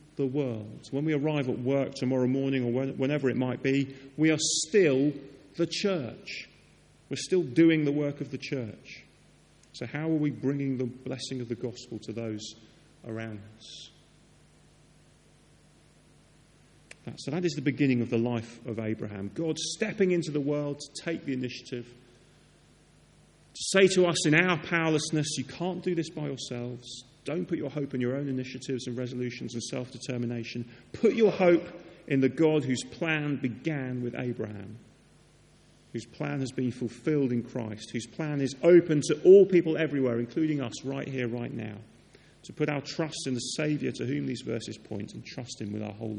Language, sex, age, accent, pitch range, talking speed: English, male, 40-59, British, 120-155 Hz, 175 wpm